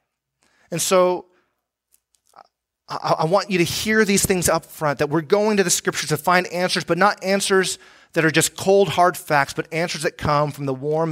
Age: 30-49